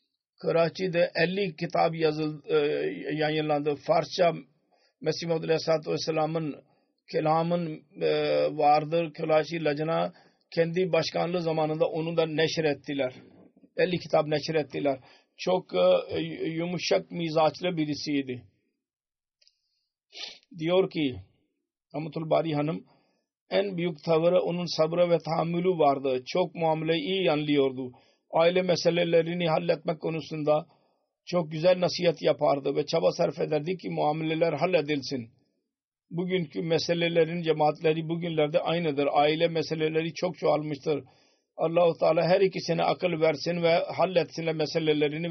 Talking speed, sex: 105 wpm, male